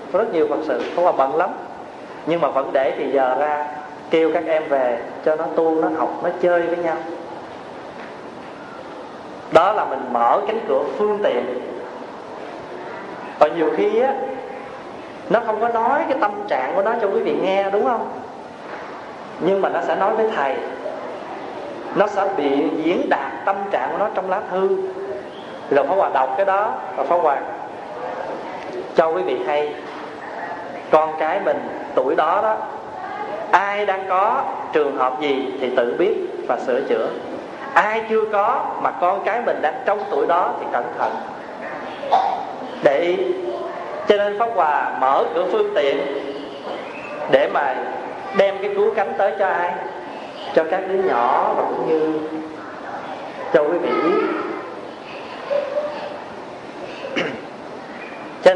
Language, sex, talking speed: Vietnamese, male, 155 wpm